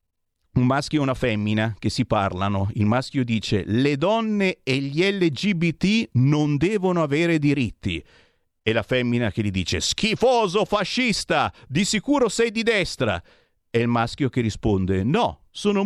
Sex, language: male, Italian